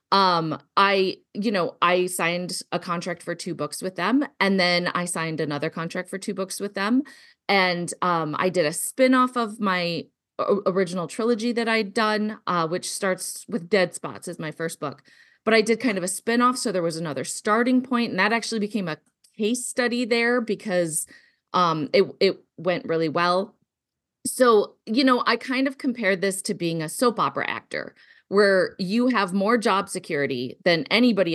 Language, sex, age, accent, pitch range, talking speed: English, female, 30-49, American, 170-230 Hz, 185 wpm